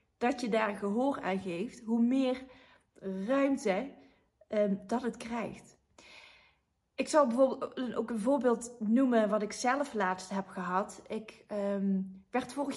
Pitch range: 200-260 Hz